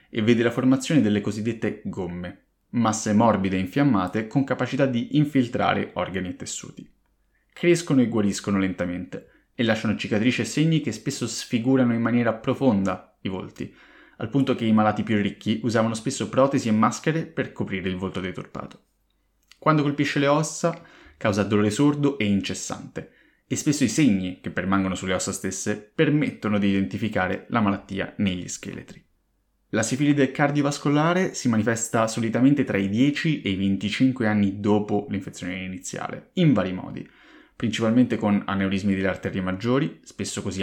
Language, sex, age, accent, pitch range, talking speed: Italian, male, 20-39, native, 95-130 Hz, 155 wpm